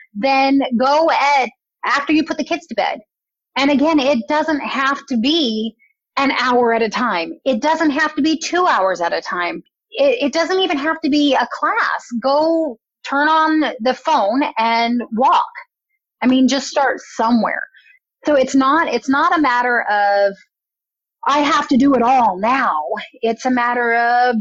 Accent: American